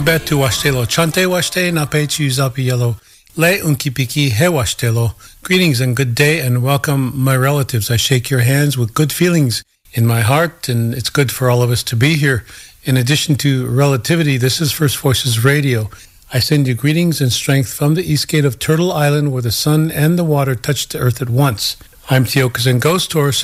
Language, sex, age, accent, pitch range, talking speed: English, male, 40-59, American, 125-150 Hz, 170 wpm